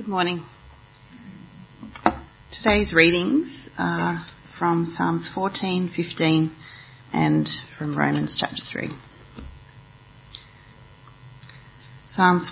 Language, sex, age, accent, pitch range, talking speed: English, female, 30-49, Australian, 130-180 Hz, 70 wpm